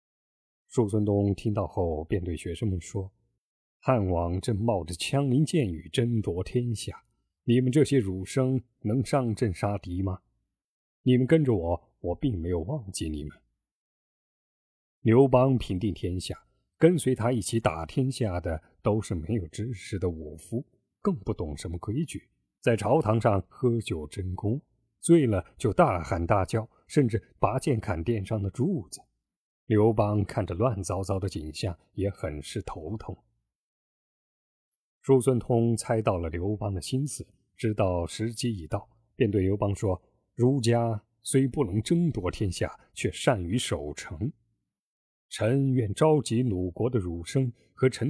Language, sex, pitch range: Chinese, male, 95-125 Hz